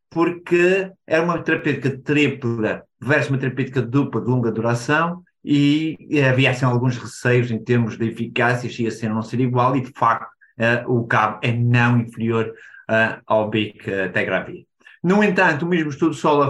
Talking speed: 165 wpm